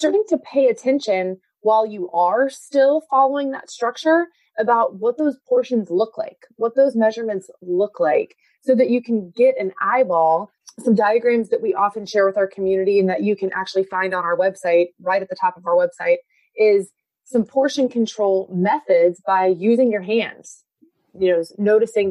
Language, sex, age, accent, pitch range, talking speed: English, female, 20-39, American, 185-245 Hz, 180 wpm